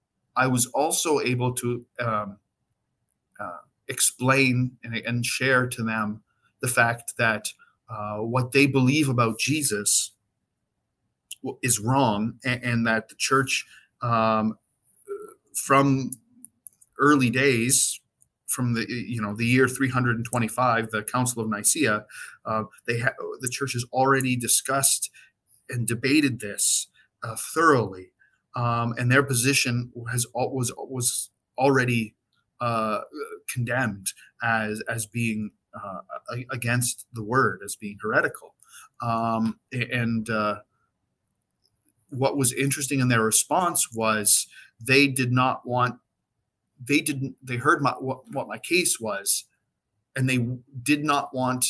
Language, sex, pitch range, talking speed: English, male, 115-130 Hz, 125 wpm